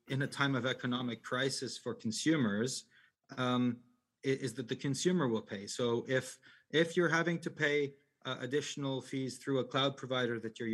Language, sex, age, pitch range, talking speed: English, male, 40-59, 125-145 Hz, 175 wpm